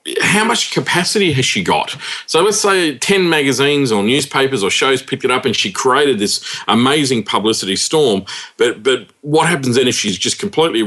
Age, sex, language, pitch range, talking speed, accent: 40-59, male, English, 105-140 Hz, 190 wpm, Australian